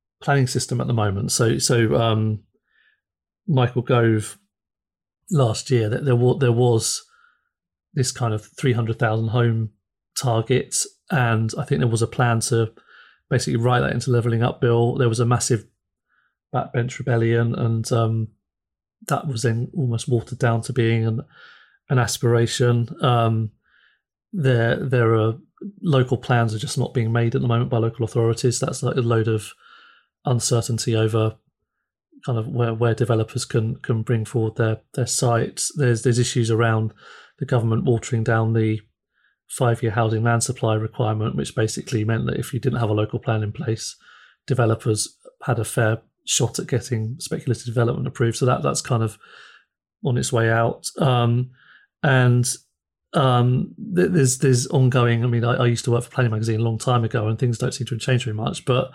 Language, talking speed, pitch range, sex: English, 175 wpm, 115-125 Hz, male